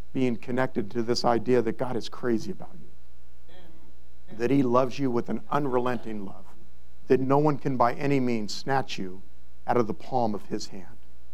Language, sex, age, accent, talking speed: English, male, 50-69, American, 185 wpm